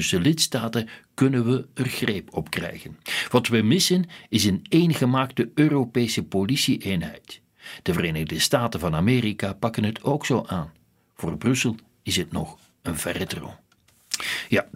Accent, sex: Dutch, male